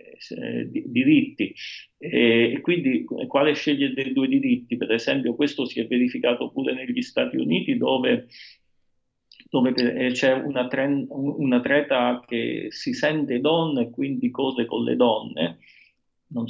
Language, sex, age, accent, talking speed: Italian, male, 40-59, native, 130 wpm